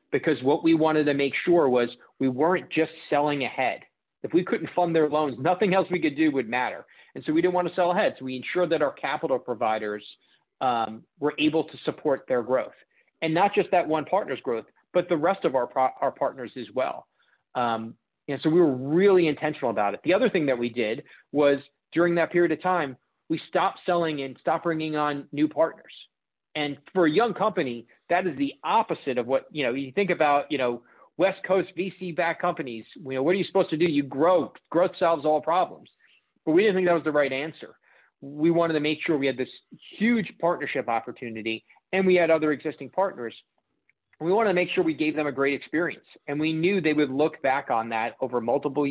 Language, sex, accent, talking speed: English, male, American, 220 wpm